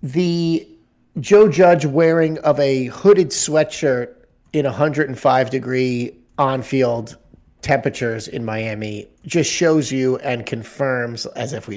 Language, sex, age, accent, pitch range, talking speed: English, male, 30-49, American, 115-145 Hz, 115 wpm